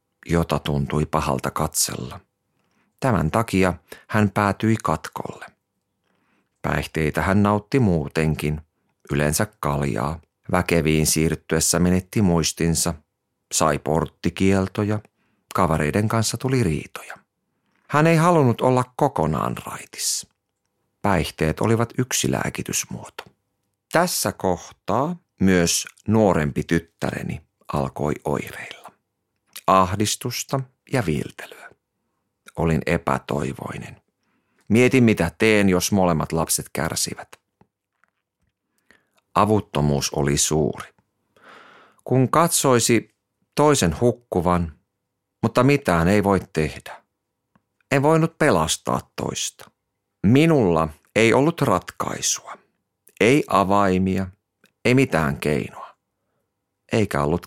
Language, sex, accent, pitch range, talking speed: Finnish, male, native, 80-110 Hz, 85 wpm